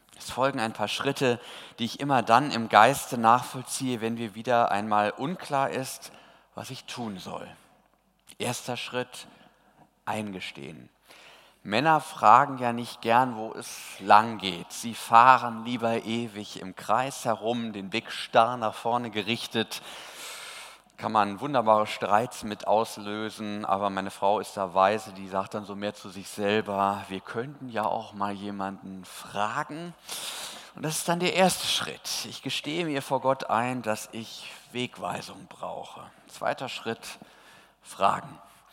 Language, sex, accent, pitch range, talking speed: German, male, German, 105-135 Hz, 145 wpm